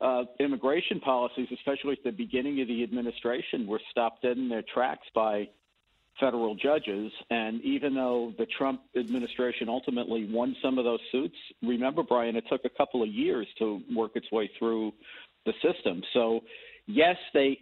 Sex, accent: male, American